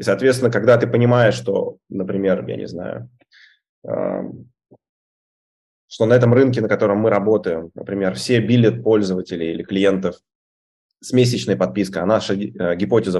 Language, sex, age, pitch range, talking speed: Russian, male, 20-39, 100-130 Hz, 140 wpm